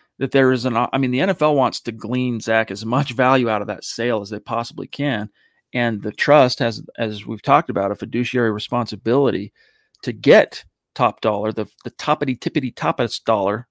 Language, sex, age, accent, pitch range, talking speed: English, male, 40-59, American, 110-135 Hz, 195 wpm